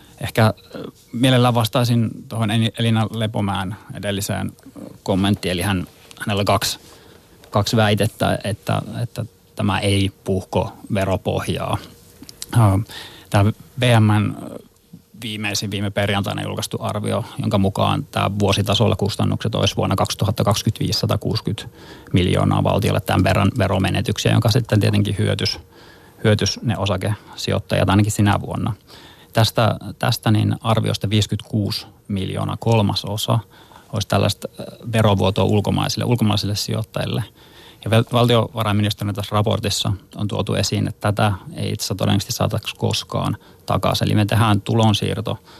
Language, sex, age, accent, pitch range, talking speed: Finnish, male, 30-49, native, 100-115 Hz, 110 wpm